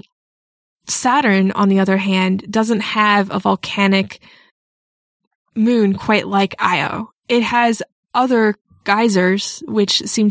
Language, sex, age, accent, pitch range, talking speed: English, female, 20-39, American, 195-220 Hz, 110 wpm